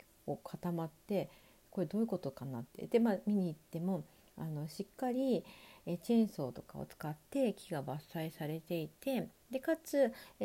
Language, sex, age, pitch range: Japanese, female, 40-59, 150-210 Hz